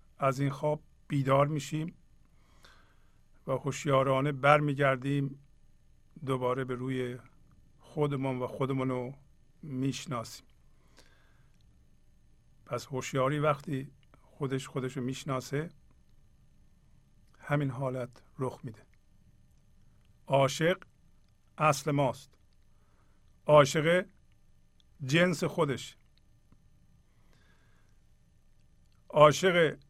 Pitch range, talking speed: 130-150 Hz, 65 wpm